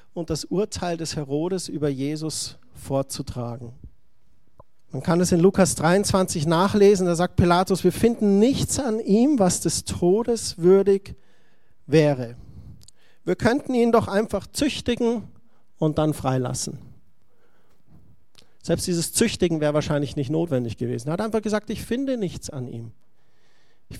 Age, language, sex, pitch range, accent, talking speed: 50-69, German, male, 150-195 Hz, German, 140 wpm